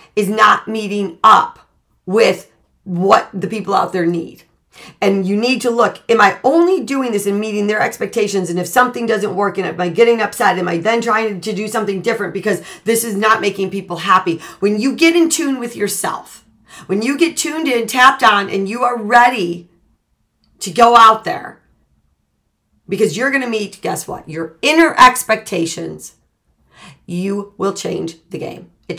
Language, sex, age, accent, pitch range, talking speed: English, female, 40-59, American, 175-230 Hz, 180 wpm